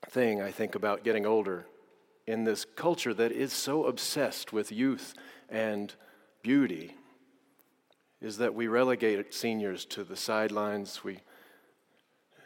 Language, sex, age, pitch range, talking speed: English, male, 40-59, 105-125 Hz, 120 wpm